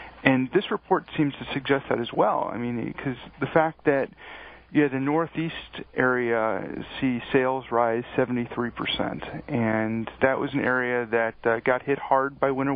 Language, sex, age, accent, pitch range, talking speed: English, male, 40-59, American, 115-135 Hz, 175 wpm